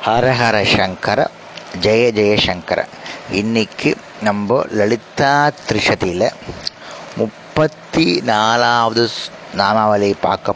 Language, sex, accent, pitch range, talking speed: Tamil, male, native, 110-140 Hz, 70 wpm